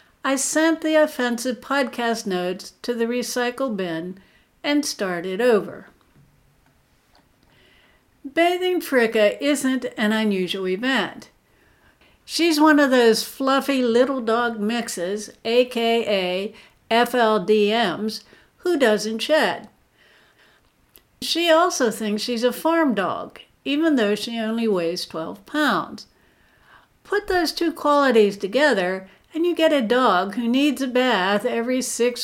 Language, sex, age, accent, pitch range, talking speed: English, female, 60-79, American, 205-275 Hz, 115 wpm